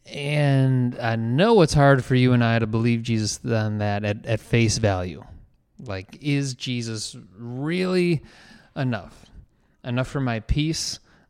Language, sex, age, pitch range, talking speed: English, male, 30-49, 115-150 Hz, 145 wpm